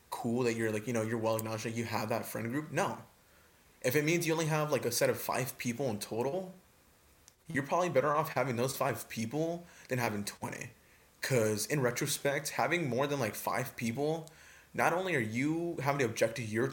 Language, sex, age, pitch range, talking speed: English, male, 20-39, 110-140 Hz, 210 wpm